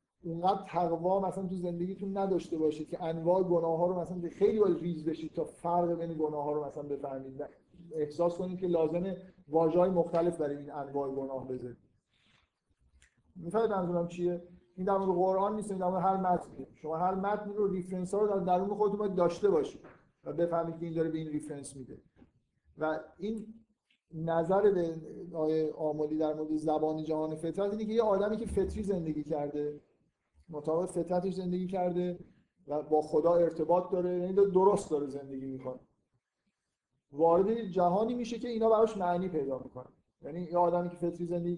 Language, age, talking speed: Persian, 50-69, 170 wpm